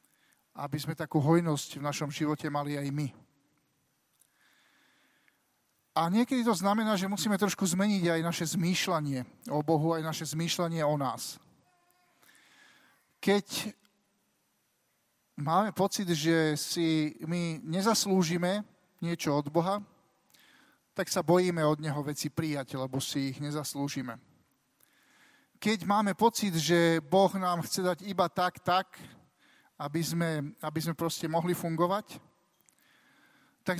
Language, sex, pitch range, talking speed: Slovak, male, 155-190 Hz, 120 wpm